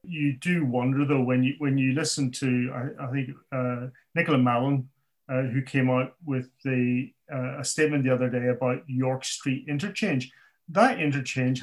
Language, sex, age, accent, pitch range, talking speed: English, male, 30-49, British, 125-145 Hz, 175 wpm